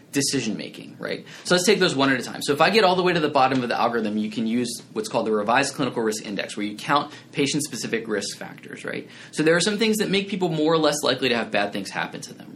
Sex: male